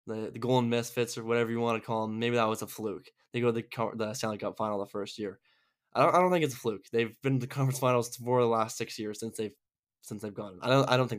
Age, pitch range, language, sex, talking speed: 10-29, 110-130 Hz, English, male, 290 wpm